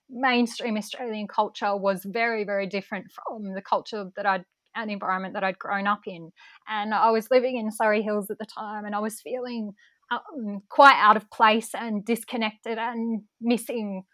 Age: 10-29